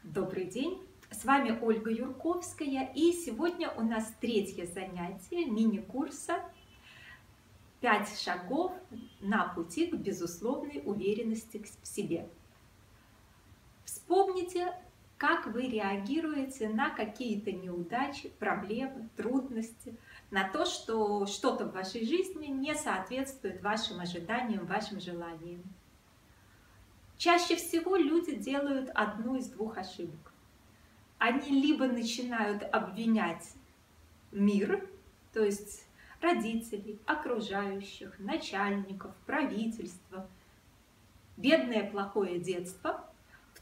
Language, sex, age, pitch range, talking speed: Russian, female, 30-49, 195-270 Hz, 95 wpm